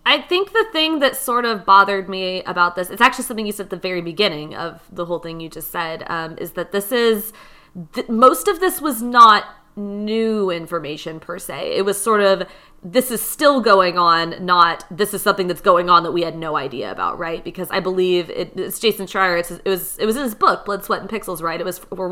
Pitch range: 180-240 Hz